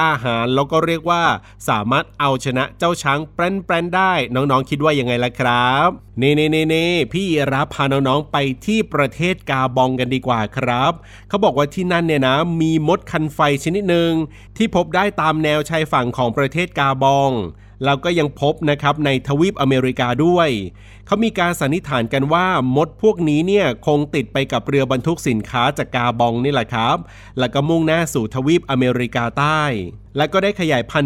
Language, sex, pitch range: Thai, male, 130-160 Hz